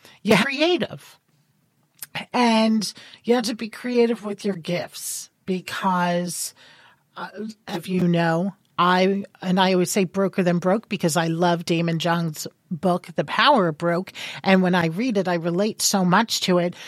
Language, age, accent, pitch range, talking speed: English, 40-59, American, 180-230 Hz, 160 wpm